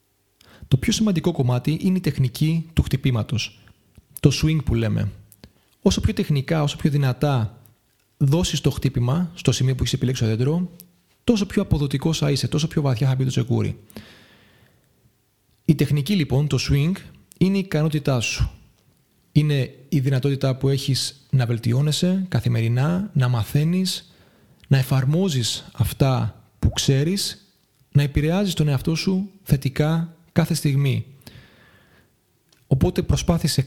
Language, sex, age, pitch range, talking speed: Greek, male, 30-49, 120-160 Hz, 135 wpm